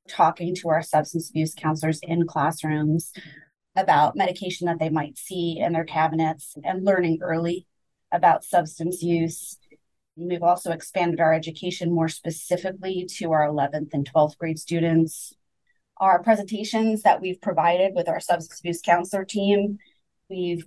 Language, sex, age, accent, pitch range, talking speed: English, female, 30-49, American, 160-180 Hz, 140 wpm